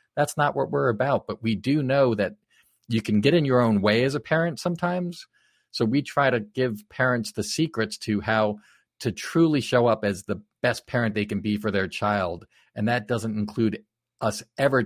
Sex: male